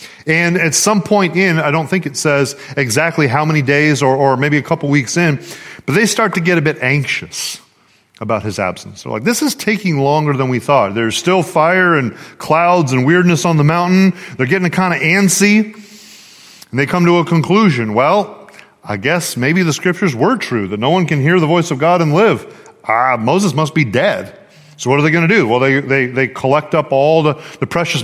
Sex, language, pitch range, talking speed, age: male, English, 135-170 Hz, 225 wpm, 40-59